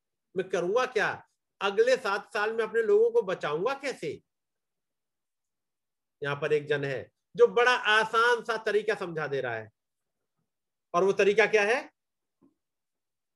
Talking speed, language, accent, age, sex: 135 wpm, Hindi, native, 50-69, male